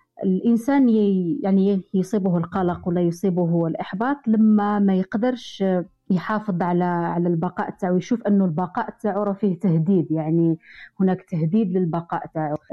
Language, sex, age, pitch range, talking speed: Arabic, female, 30-49, 170-215 Hz, 125 wpm